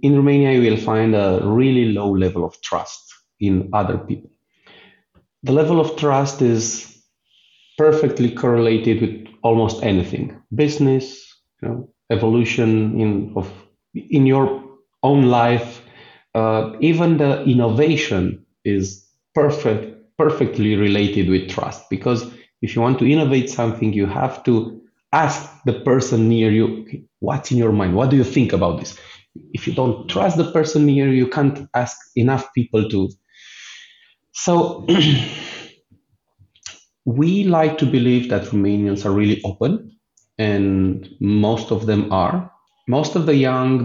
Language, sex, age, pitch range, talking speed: English, male, 30-49, 105-135 Hz, 140 wpm